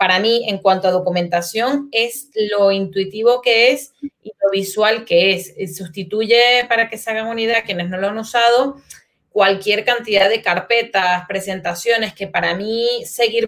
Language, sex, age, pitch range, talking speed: Spanish, female, 30-49, 195-245 Hz, 165 wpm